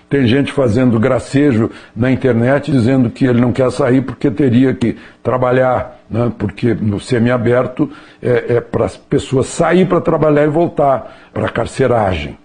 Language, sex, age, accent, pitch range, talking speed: Portuguese, male, 60-79, Brazilian, 120-155 Hz, 160 wpm